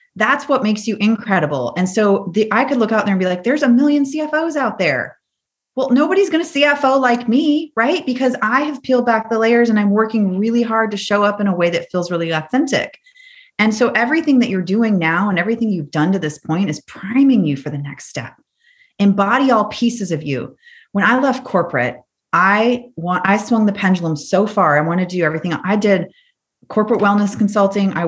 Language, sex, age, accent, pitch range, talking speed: English, female, 30-49, American, 170-240 Hz, 215 wpm